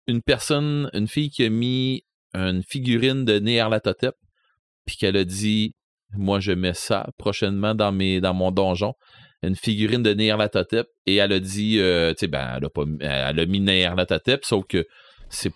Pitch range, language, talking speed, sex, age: 90-110 Hz, French, 190 wpm, male, 30-49